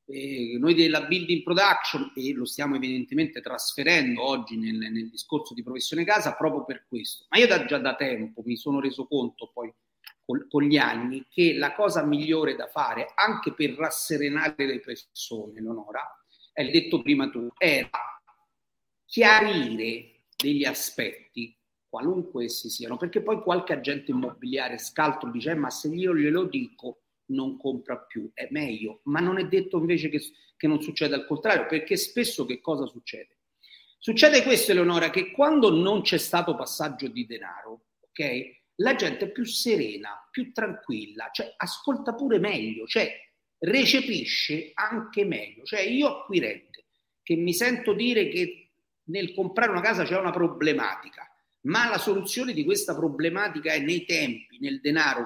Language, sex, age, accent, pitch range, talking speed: Italian, male, 40-59, native, 135-215 Hz, 155 wpm